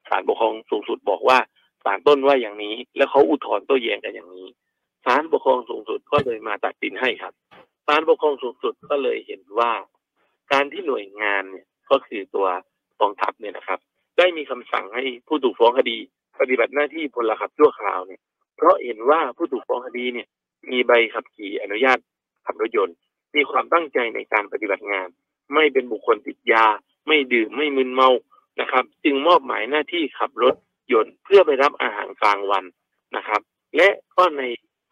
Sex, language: male, Thai